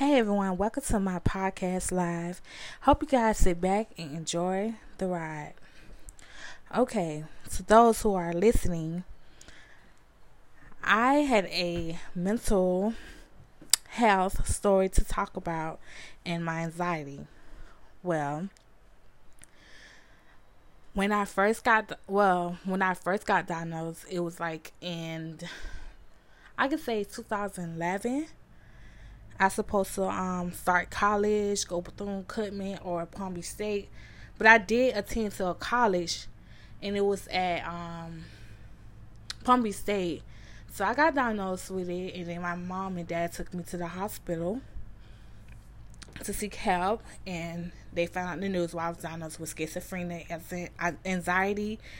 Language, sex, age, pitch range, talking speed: English, female, 20-39, 170-205 Hz, 135 wpm